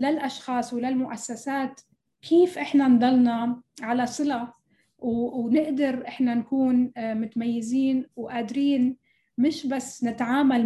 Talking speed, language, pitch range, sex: 85 wpm, Arabic, 225-265 Hz, female